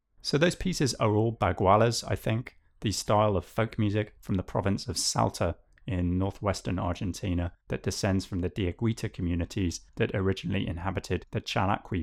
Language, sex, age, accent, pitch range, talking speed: English, male, 30-49, British, 90-110 Hz, 160 wpm